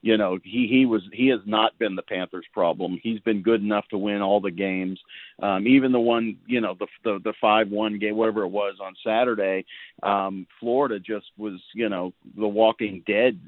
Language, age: English, 40-59